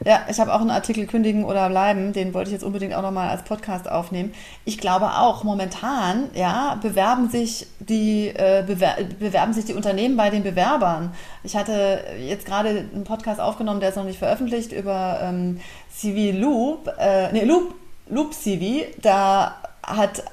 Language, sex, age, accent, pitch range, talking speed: German, female, 30-49, German, 195-270 Hz, 170 wpm